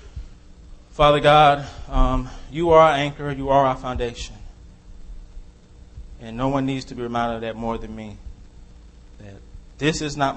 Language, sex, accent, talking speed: English, male, American, 155 wpm